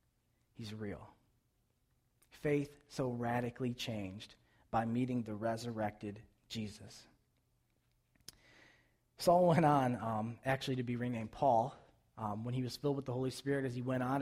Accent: American